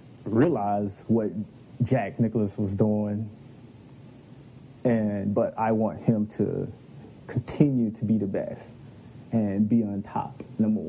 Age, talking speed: 30-49, 120 wpm